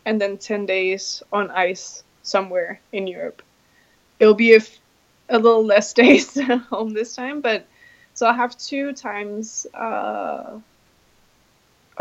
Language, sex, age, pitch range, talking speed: English, female, 20-39, 205-255 Hz, 135 wpm